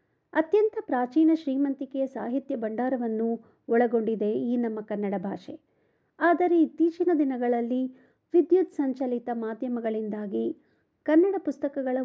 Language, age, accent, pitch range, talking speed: Kannada, 50-69, native, 225-295 Hz, 90 wpm